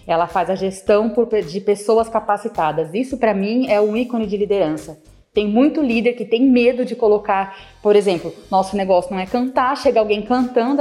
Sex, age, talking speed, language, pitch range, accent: female, 20-39, 185 wpm, Portuguese, 200-245 Hz, Brazilian